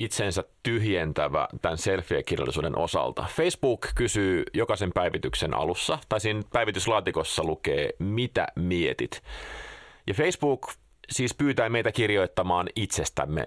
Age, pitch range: 30-49, 90-130 Hz